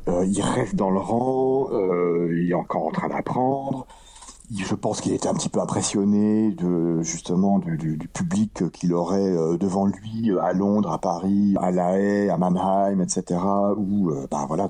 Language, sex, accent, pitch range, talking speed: French, male, French, 85-105 Hz, 190 wpm